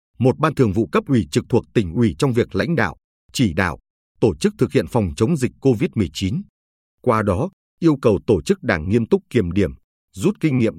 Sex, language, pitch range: male, Vietnamese, 100-140 Hz